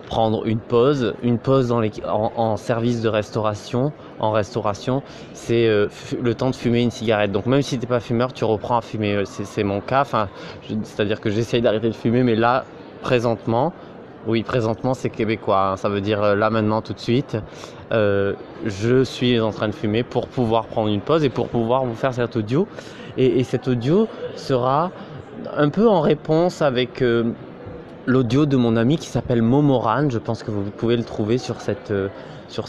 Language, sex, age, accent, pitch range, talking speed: French, male, 20-39, French, 105-125 Hz, 200 wpm